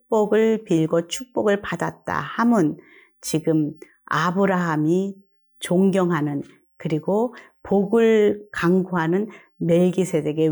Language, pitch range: Korean, 165-215 Hz